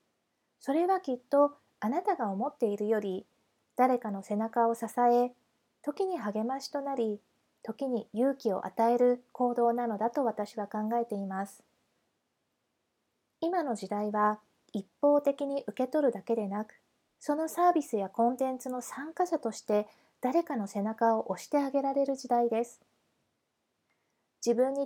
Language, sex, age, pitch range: Japanese, female, 20-39, 215-280 Hz